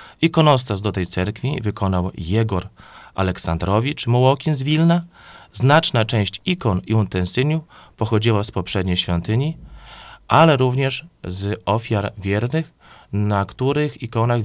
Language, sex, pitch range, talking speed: Polish, male, 95-135 Hz, 110 wpm